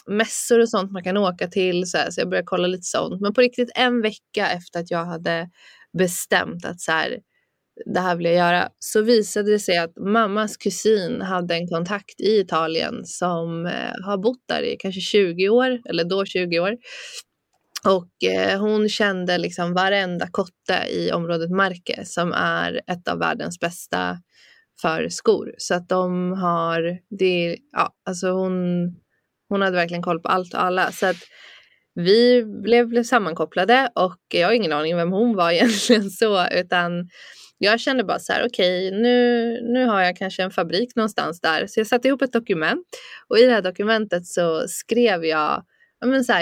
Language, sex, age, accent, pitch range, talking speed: Swedish, female, 20-39, native, 175-230 Hz, 175 wpm